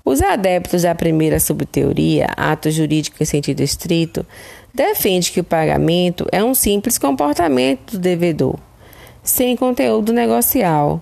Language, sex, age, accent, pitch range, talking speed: Portuguese, female, 20-39, Brazilian, 150-215 Hz, 125 wpm